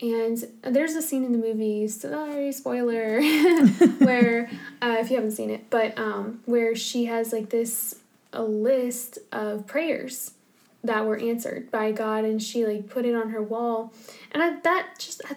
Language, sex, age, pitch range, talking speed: English, female, 10-29, 220-245 Hz, 170 wpm